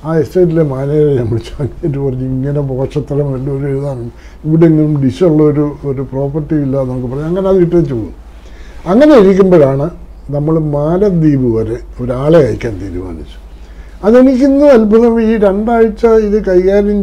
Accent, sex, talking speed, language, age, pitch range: native, male, 115 wpm, Malayalam, 60-79, 135-190 Hz